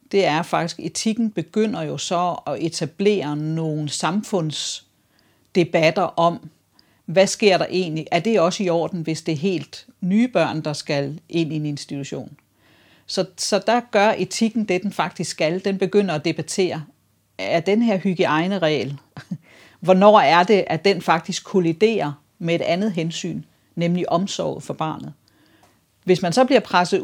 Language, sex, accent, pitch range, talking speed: English, female, Danish, 155-195 Hz, 155 wpm